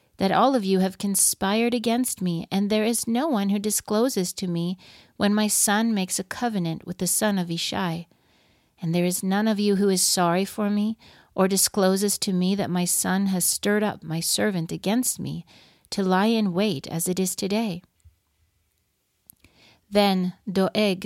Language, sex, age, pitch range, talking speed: English, female, 40-59, 175-210 Hz, 180 wpm